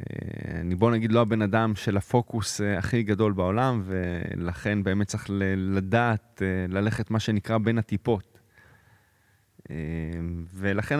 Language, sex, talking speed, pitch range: Hebrew, male, 120 wpm, 100-120 Hz